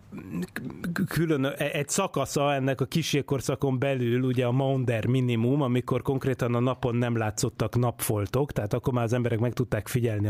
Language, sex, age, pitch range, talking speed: Hungarian, male, 30-49, 115-145 Hz, 150 wpm